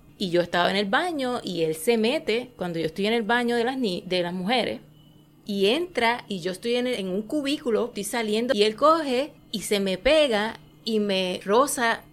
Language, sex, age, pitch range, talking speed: Spanish, female, 30-49, 185-235 Hz, 220 wpm